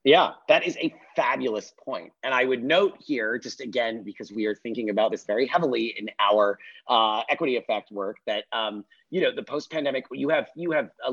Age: 30-49